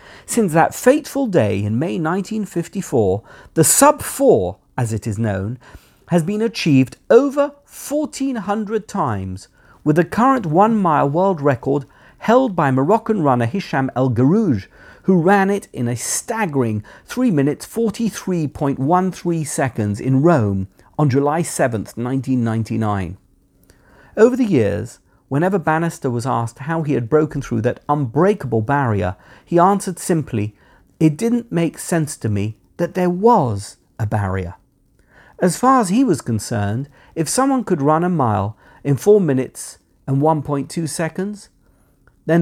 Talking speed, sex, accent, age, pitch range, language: 135 wpm, male, British, 50-69, 120-185 Hz, English